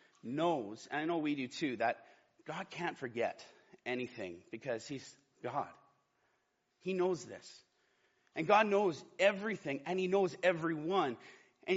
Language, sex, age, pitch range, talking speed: English, male, 30-49, 145-210 Hz, 140 wpm